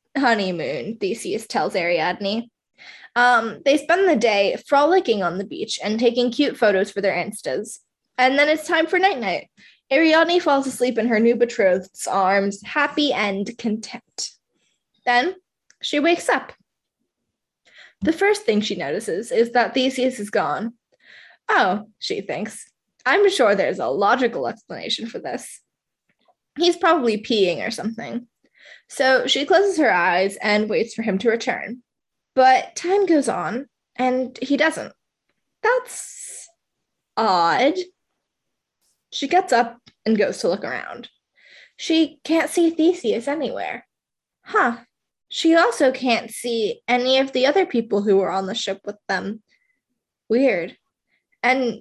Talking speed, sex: 140 wpm, female